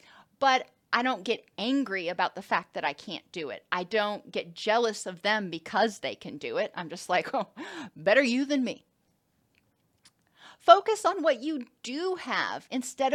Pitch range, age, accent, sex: 210-275 Hz, 40-59, American, female